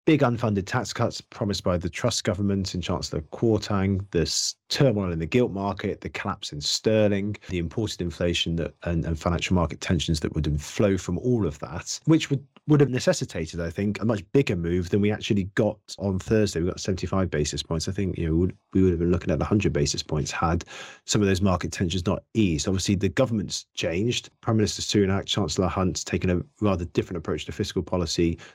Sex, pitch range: male, 85-105 Hz